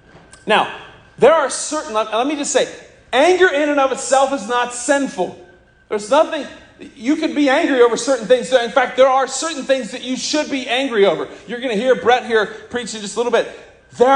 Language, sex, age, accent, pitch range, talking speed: English, male, 40-59, American, 170-260 Hz, 210 wpm